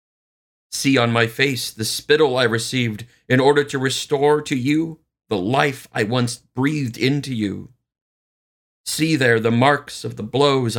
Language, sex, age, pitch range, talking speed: English, male, 50-69, 115-135 Hz, 155 wpm